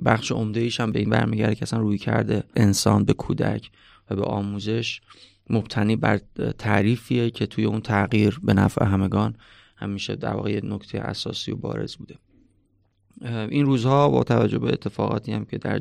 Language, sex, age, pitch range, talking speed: Persian, male, 30-49, 100-120 Hz, 165 wpm